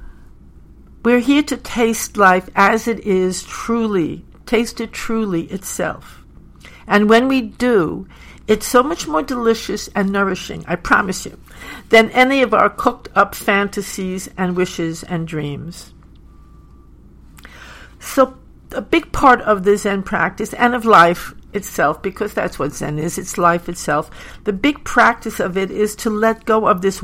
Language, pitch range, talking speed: English, 175-220 Hz, 155 wpm